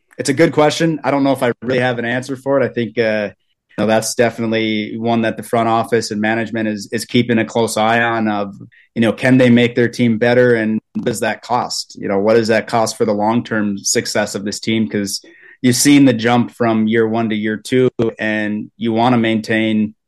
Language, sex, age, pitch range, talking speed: English, male, 30-49, 110-120 Hz, 235 wpm